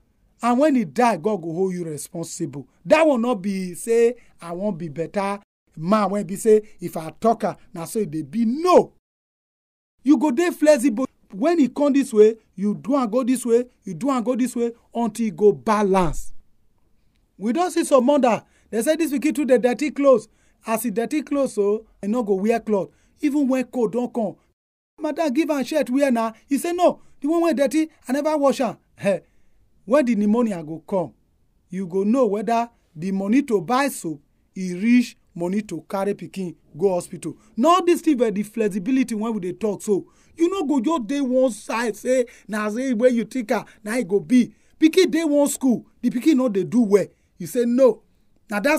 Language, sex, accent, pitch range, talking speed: English, male, Nigerian, 200-270 Hz, 210 wpm